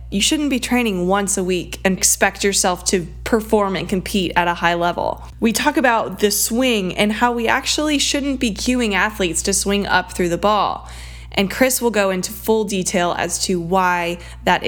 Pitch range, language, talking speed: 180-225 Hz, English, 195 wpm